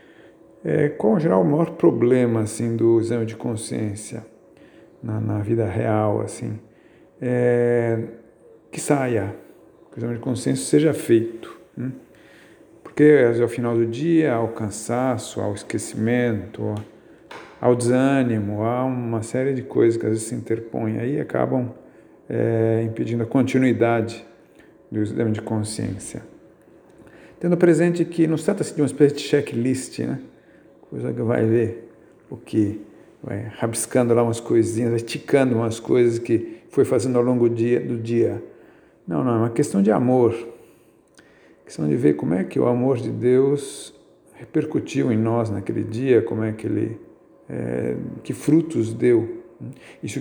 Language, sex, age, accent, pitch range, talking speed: Portuguese, male, 40-59, Brazilian, 115-130 Hz, 160 wpm